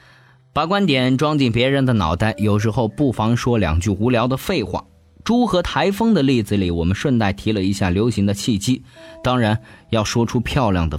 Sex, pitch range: male, 95-150 Hz